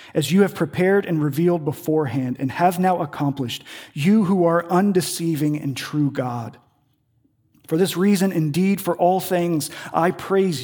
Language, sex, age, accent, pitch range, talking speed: English, male, 40-59, American, 130-175 Hz, 150 wpm